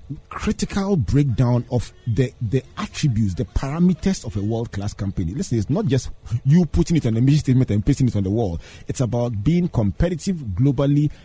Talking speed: 185 wpm